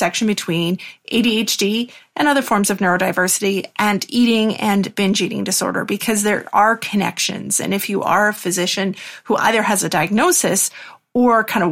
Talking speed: 160 wpm